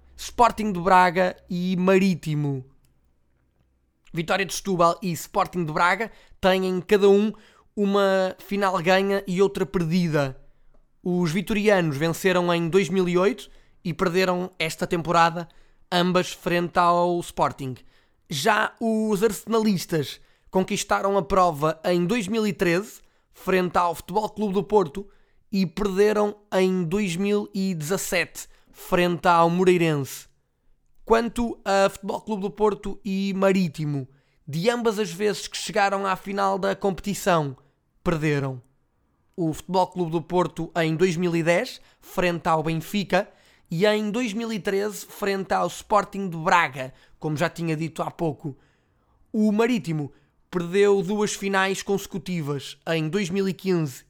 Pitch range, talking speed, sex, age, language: 165-200 Hz, 120 wpm, male, 20-39, Portuguese